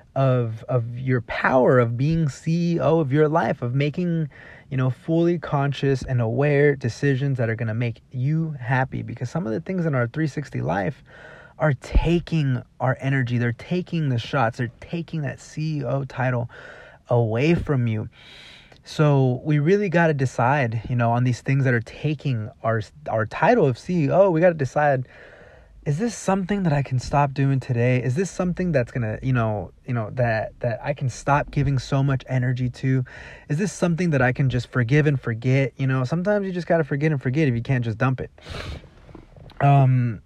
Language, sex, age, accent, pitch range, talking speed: English, male, 20-39, American, 125-155 Hz, 190 wpm